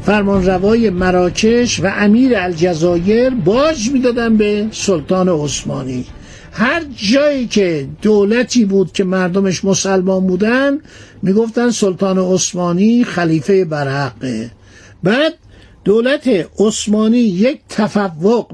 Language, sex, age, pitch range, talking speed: Persian, male, 60-79, 180-230 Hz, 95 wpm